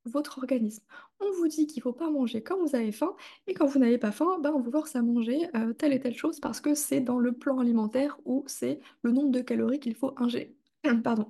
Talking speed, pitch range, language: 255 wpm, 235-295 Hz, French